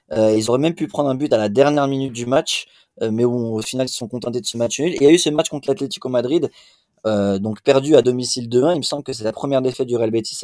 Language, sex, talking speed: French, male, 305 wpm